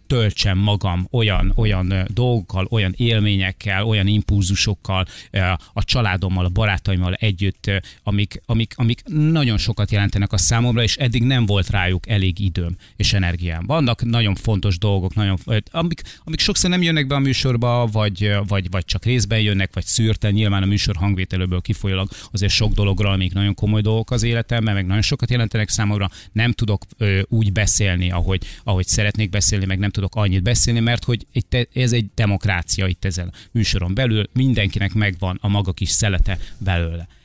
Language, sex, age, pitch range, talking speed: Hungarian, male, 30-49, 95-110 Hz, 165 wpm